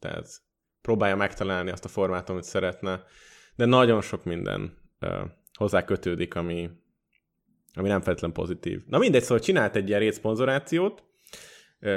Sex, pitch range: male, 95-125 Hz